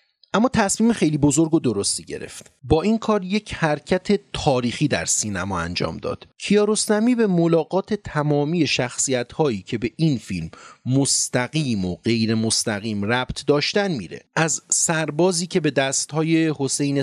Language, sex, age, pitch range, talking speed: Persian, male, 30-49, 125-185 Hz, 140 wpm